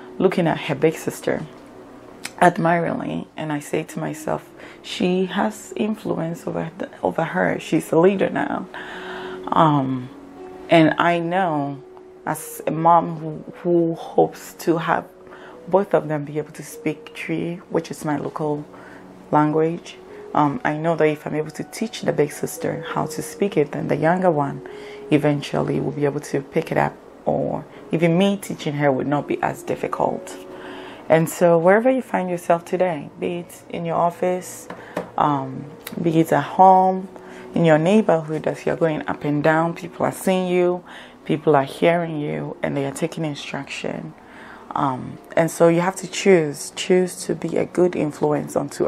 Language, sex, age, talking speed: English, female, 30-49, 170 wpm